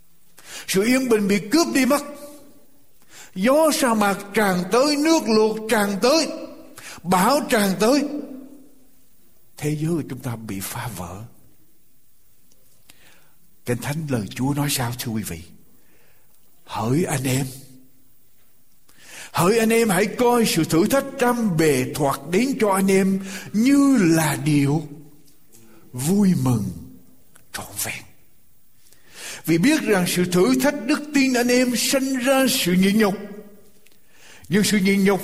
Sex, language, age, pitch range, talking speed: male, Vietnamese, 60-79, 160-265 Hz, 135 wpm